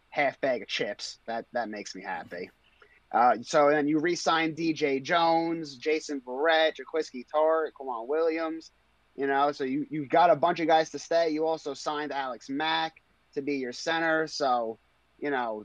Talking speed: 175 wpm